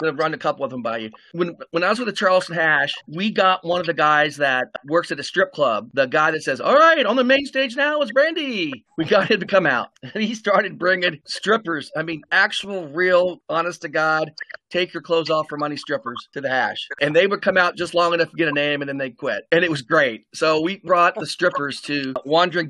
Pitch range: 155-195 Hz